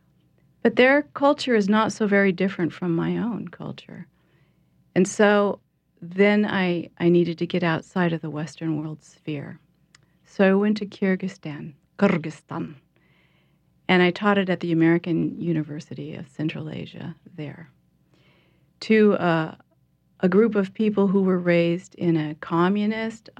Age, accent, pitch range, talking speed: 40-59, American, 160-200 Hz, 145 wpm